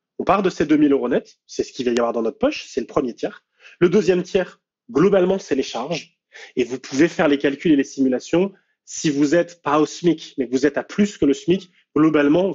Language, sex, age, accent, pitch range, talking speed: French, male, 30-49, French, 130-170 Hz, 255 wpm